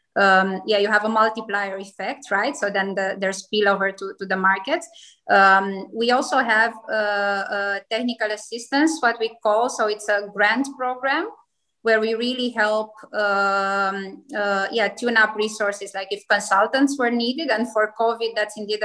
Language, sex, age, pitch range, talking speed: English, female, 20-39, 200-235 Hz, 170 wpm